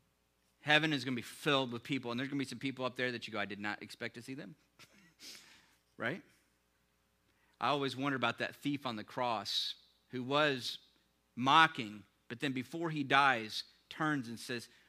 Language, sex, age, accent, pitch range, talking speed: English, male, 40-59, American, 100-140 Hz, 195 wpm